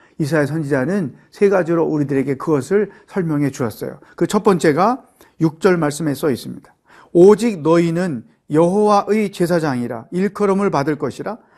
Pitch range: 155-205 Hz